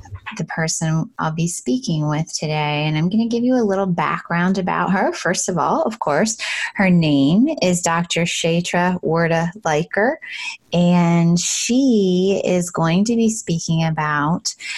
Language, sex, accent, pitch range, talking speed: English, female, American, 165-195 Hz, 150 wpm